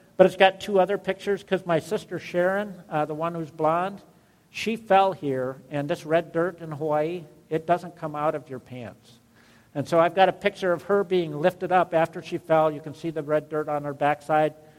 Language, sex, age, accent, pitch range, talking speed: English, male, 50-69, American, 135-185 Hz, 220 wpm